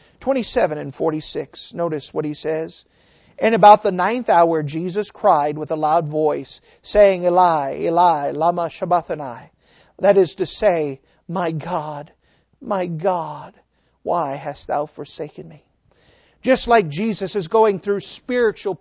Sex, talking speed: male, 135 wpm